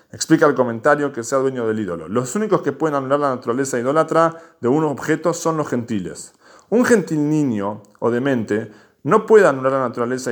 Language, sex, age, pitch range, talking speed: Spanish, male, 40-59, 125-165 Hz, 185 wpm